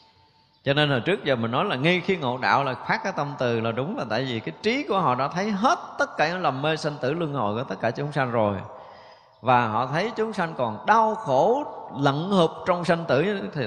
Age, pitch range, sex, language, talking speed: 20-39, 125-170 Hz, male, Vietnamese, 255 wpm